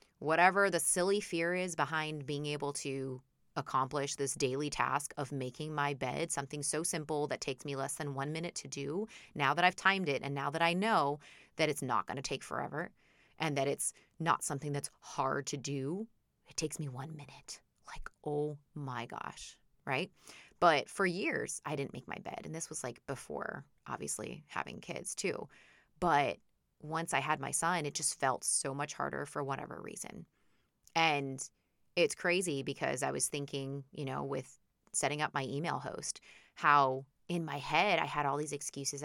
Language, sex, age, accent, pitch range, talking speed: English, female, 20-39, American, 140-165 Hz, 185 wpm